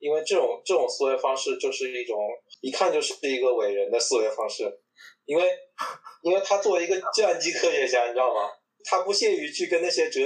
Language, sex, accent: Chinese, male, native